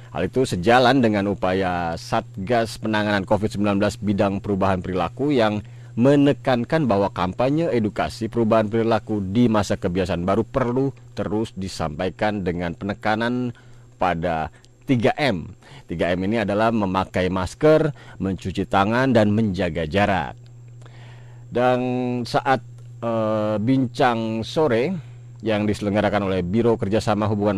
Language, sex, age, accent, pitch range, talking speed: Indonesian, male, 40-59, native, 100-125 Hz, 110 wpm